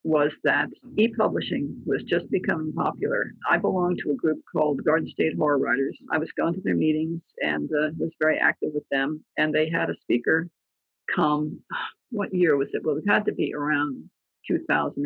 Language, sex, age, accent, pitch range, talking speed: English, female, 50-69, American, 150-205 Hz, 185 wpm